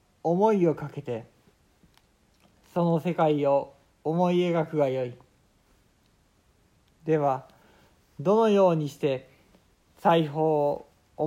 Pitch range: 130-175 Hz